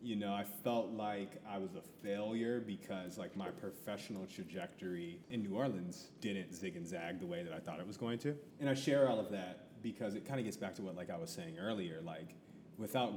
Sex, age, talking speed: male, 30-49, 230 wpm